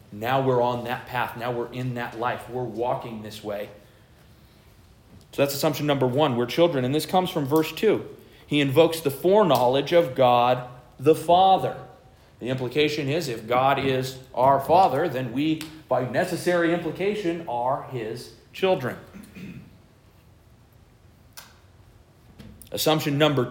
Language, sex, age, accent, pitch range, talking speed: English, male, 40-59, American, 125-170 Hz, 135 wpm